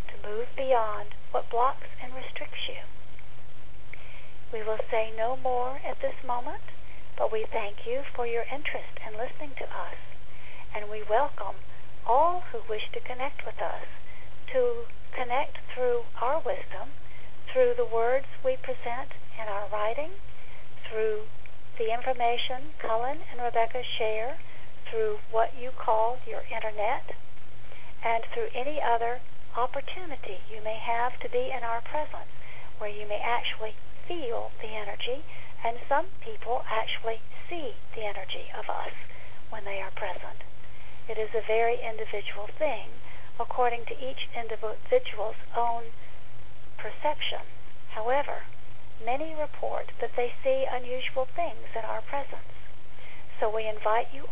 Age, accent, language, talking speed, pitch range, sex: 50-69, American, English, 135 wpm, 225-300 Hz, female